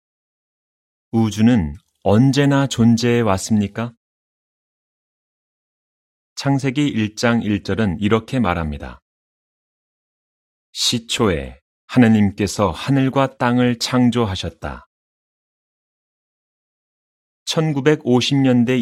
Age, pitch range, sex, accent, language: 30-49, 95-130 Hz, male, native, Korean